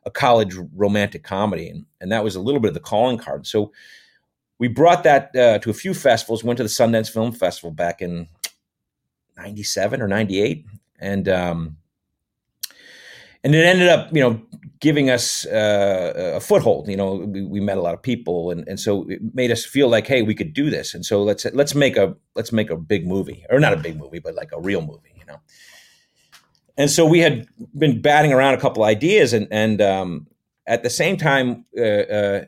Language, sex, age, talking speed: English, male, 40-59, 205 wpm